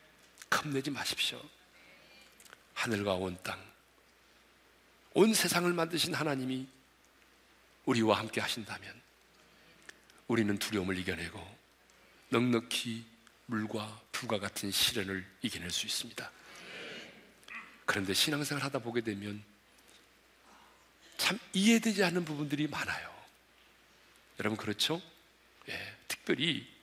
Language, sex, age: Korean, male, 40-59